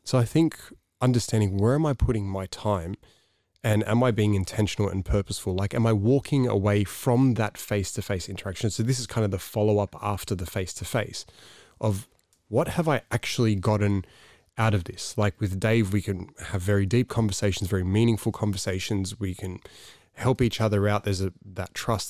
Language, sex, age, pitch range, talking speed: English, male, 20-39, 95-110 Hz, 180 wpm